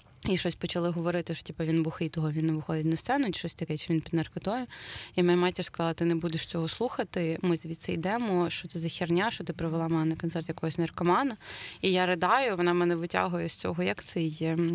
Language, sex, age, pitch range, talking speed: Ukrainian, female, 20-39, 165-200 Hz, 225 wpm